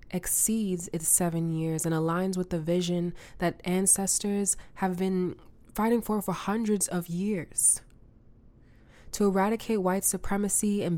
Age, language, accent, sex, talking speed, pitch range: 20-39, English, American, female, 130 wpm, 160-185 Hz